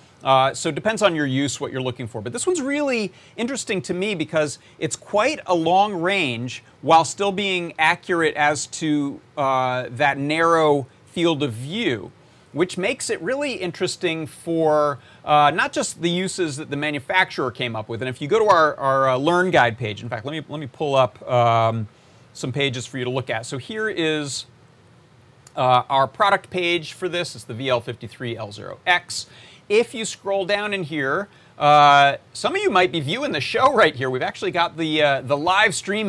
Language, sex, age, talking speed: English, male, 40-59, 195 wpm